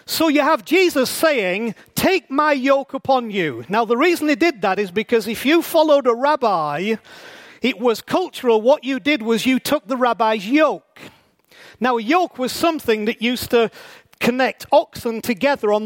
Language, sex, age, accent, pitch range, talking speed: English, male, 40-59, British, 235-295 Hz, 180 wpm